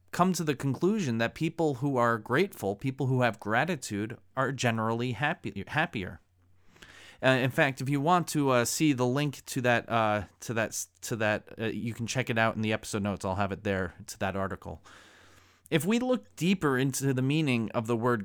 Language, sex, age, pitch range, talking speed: English, male, 30-49, 95-135 Hz, 195 wpm